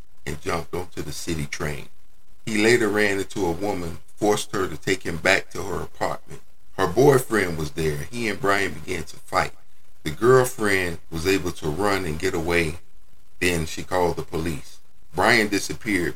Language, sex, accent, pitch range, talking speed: English, male, American, 80-105 Hz, 175 wpm